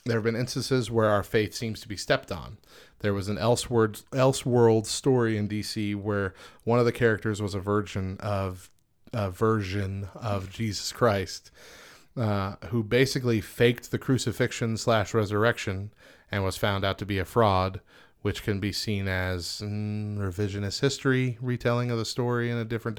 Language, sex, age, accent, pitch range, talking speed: English, male, 30-49, American, 100-115 Hz, 170 wpm